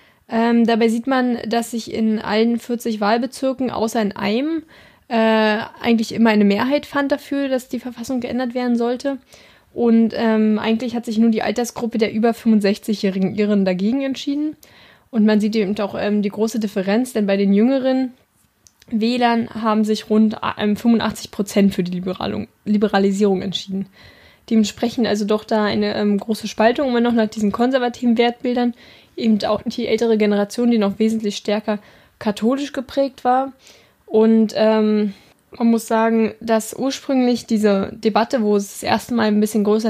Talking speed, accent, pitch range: 165 wpm, German, 210-240 Hz